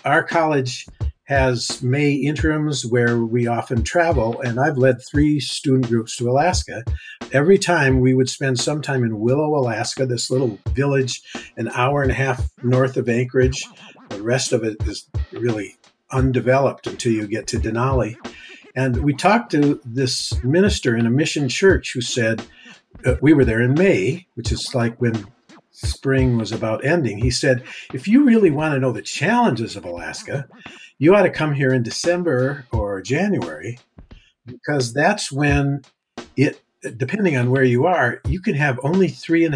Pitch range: 120-145 Hz